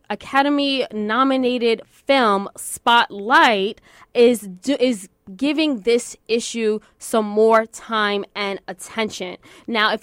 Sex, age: female, 20-39